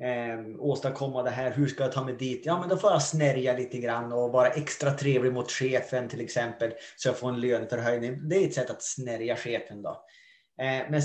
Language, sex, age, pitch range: Swedish, male, 20-39, 125-155 Hz